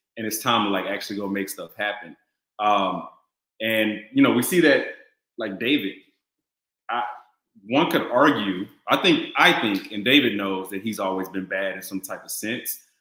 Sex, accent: male, American